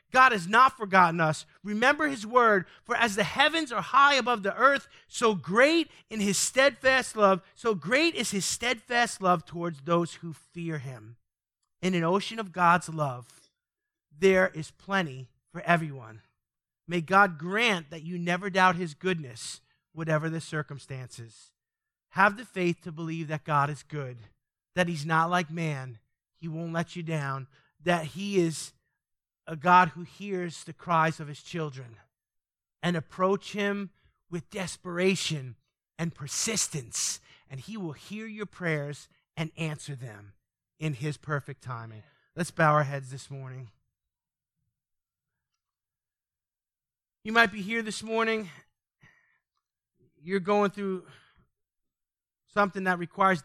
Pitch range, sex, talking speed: 150-205 Hz, male, 140 wpm